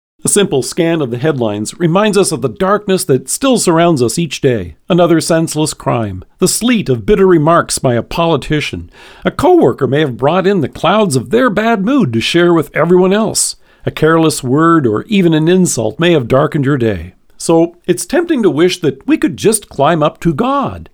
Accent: American